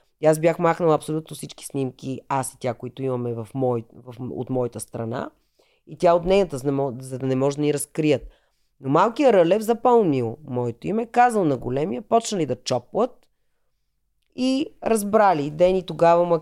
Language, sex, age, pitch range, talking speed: Bulgarian, female, 30-49, 130-180 Hz, 170 wpm